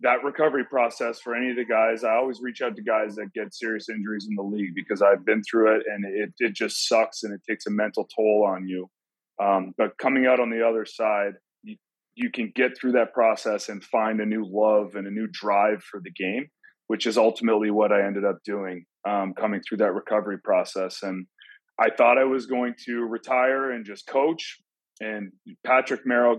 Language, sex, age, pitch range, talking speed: English, male, 30-49, 100-120 Hz, 215 wpm